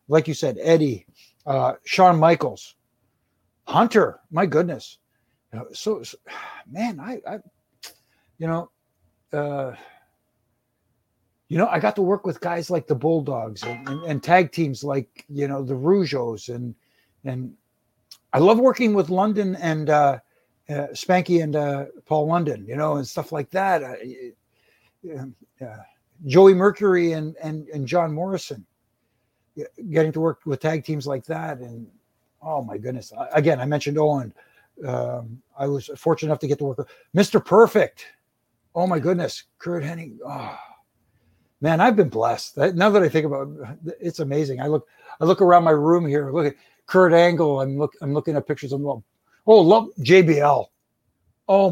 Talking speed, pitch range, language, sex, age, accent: 160 wpm, 135-170 Hz, English, male, 60-79, American